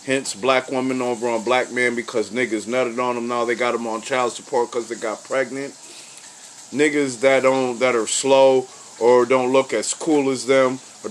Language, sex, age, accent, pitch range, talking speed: English, male, 30-49, American, 120-140 Hz, 200 wpm